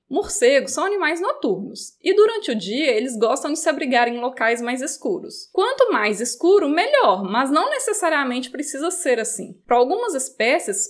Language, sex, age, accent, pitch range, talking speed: Portuguese, female, 20-39, Brazilian, 250-370 Hz, 165 wpm